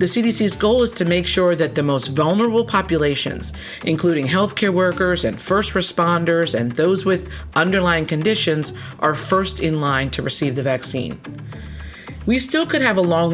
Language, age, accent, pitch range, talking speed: English, 40-59, American, 145-185 Hz, 165 wpm